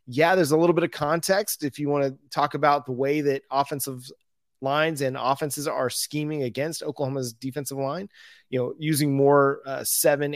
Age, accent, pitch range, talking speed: 30-49, American, 140-175 Hz, 185 wpm